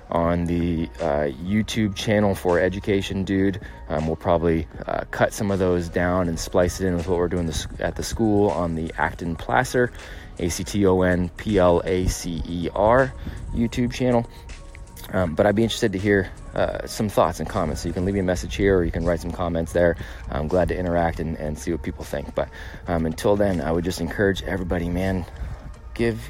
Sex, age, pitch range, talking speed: male, 20-39, 80-95 Hz, 190 wpm